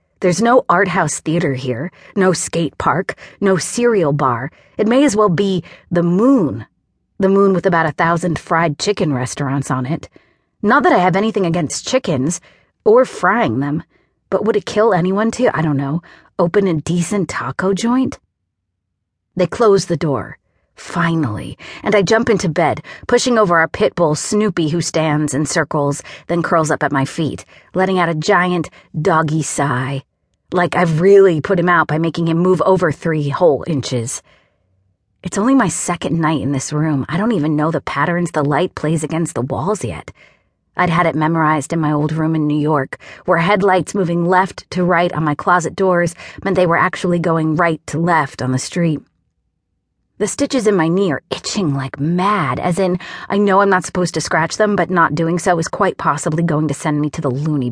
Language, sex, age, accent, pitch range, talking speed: English, female, 30-49, American, 150-185 Hz, 195 wpm